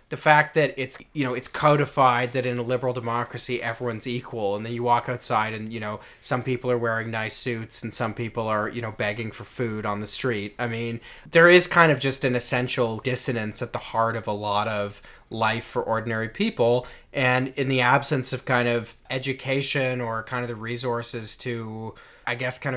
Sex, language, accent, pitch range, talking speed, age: male, English, American, 115-135 Hz, 210 wpm, 30-49